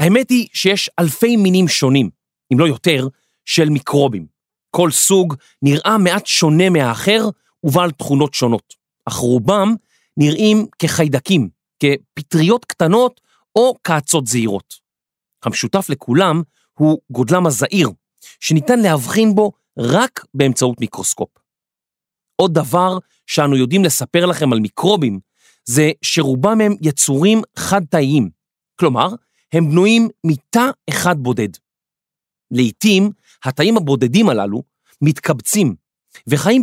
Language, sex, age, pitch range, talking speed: Hebrew, male, 40-59, 135-195 Hz, 105 wpm